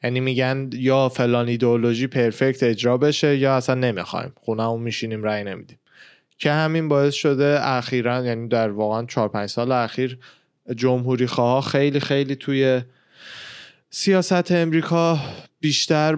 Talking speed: 130 wpm